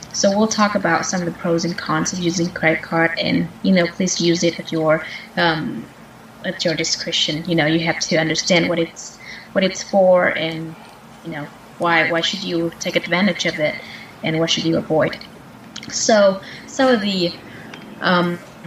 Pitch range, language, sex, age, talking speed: 165-195 Hz, Vietnamese, female, 20-39, 185 wpm